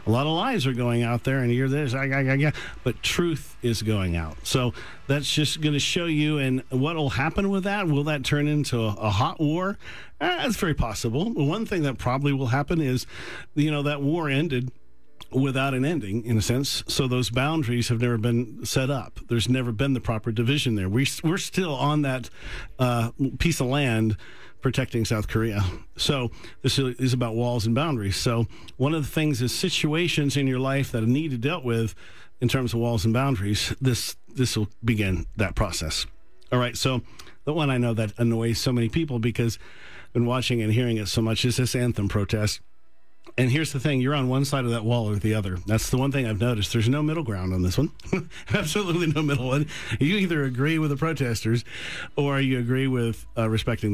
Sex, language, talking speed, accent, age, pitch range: male, English, 205 wpm, American, 50-69, 115-140 Hz